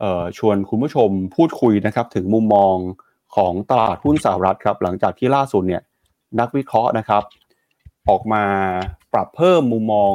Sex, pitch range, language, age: male, 100-120 Hz, Thai, 30-49